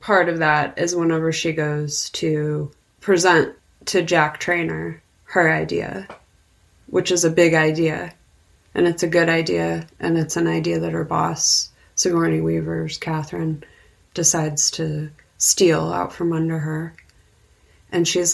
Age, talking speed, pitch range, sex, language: 20-39, 140 wpm, 155-185 Hz, female, English